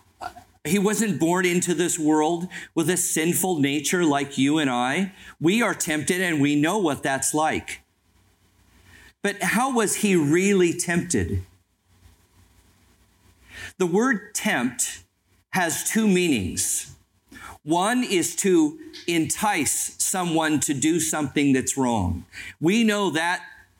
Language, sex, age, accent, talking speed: English, male, 50-69, American, 120 wpm